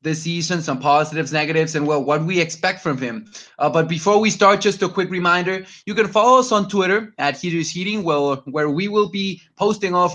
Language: English